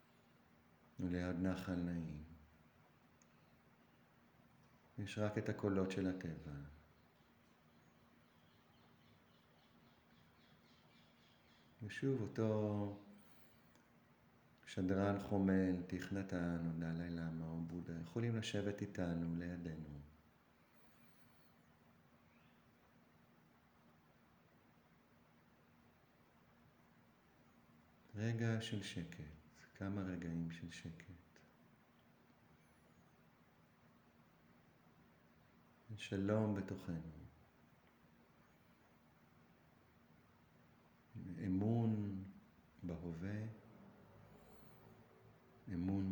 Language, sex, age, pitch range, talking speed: Hebrew, male, 50-69, 80-95 Hz, 45 wpm